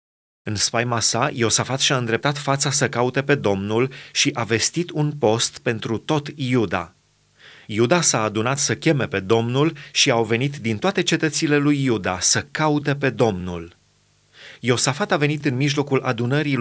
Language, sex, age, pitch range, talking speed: Romanian, male, 30-49, 125-155 Hz, 160 wpm